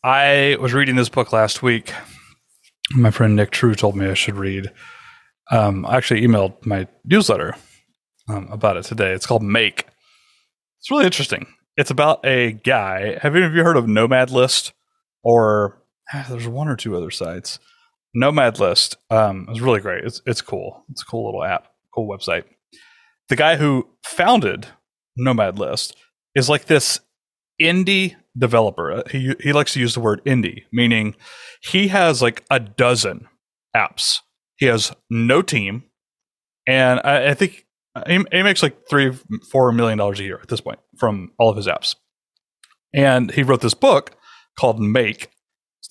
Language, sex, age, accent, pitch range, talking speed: English, male, 30-49, American, 110-145 Hz, 165 wpm